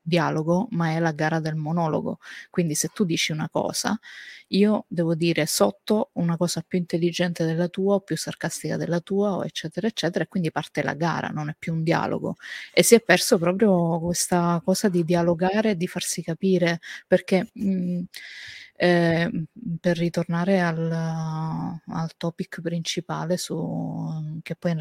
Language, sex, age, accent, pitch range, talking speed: Italian, female, 30-49, native, 165-185 Hz, 155 wpm